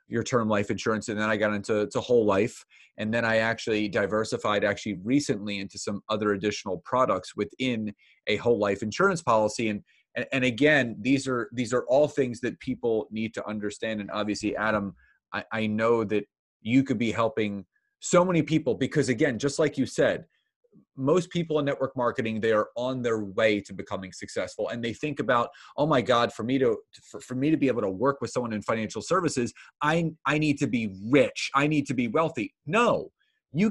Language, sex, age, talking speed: English, male, 30-49, 205 wpm